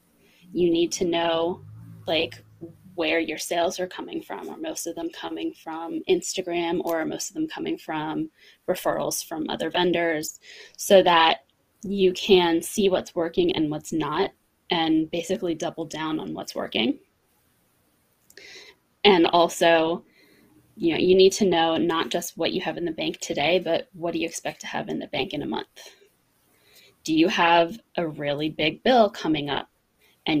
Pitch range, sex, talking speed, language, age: 160-230 Hz, female, 165 wpm, English, 20-39